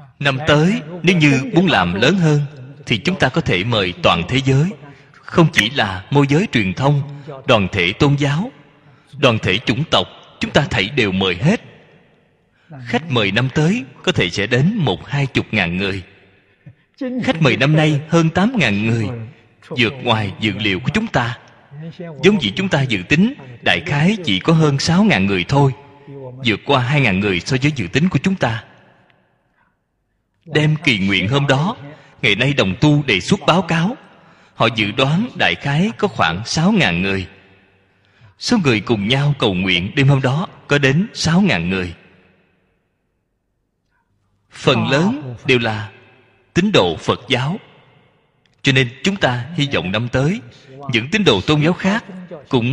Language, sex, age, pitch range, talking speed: Vietnamese, male, 20-39, 110-155 Hz, 175 wpm